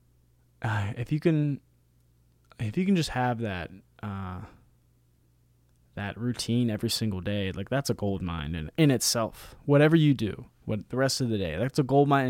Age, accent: 20-39, American